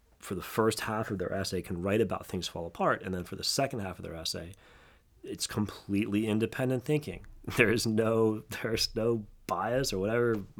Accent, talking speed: American, 190 wpm